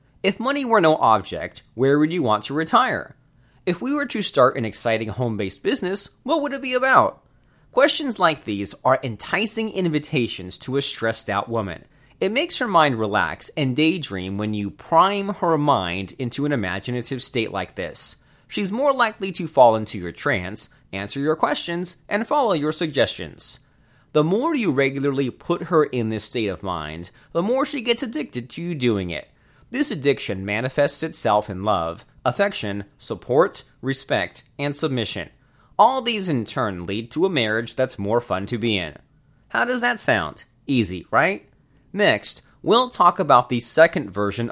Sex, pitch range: male, 110-170 Hz